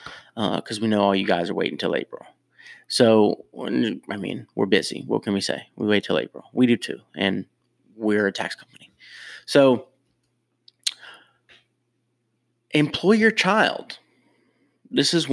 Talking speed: 150 wpm